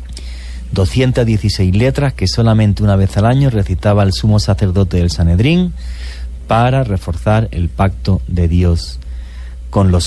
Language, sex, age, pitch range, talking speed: English, male, 30-49, 80-115 Hz, 130 wpm